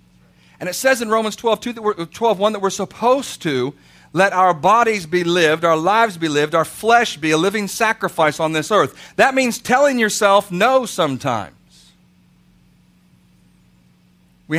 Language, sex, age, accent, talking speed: English, male, 40-59, American, 150 wpm